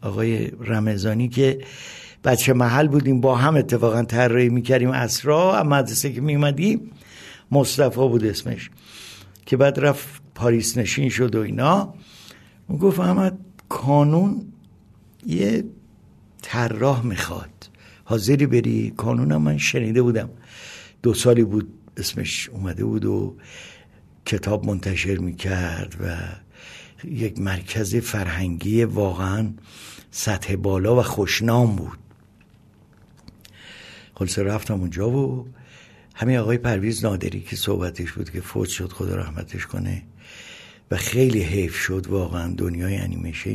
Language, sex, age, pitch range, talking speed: Persian, male, 60-79, 100-135 Hz, 115 wpm